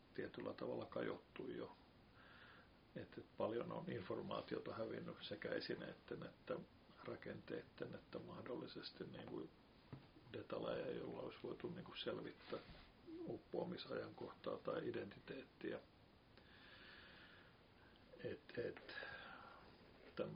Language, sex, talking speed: Finnish, male, 80 wpm